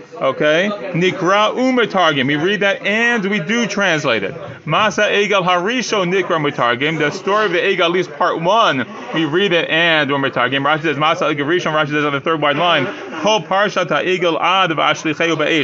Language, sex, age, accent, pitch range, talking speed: English, male, 30-49, American, 150-190 Hz, 160 wpm